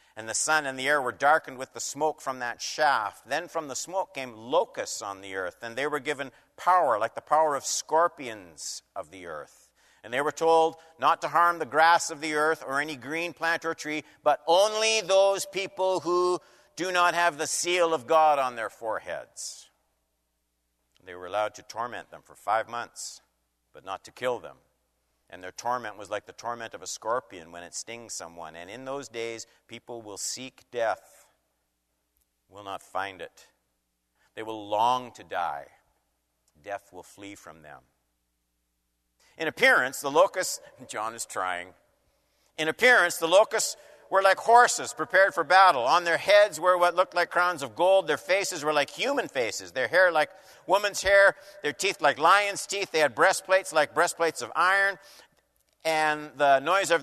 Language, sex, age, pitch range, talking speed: English, male, 50-69, 120-180 Hz, 180 wpm